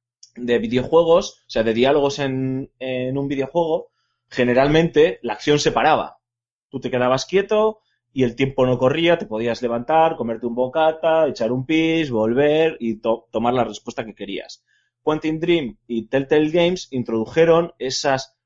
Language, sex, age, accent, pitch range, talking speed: Spanish, male, 20-39, Spanish, 120-155 Hz, 155 wpm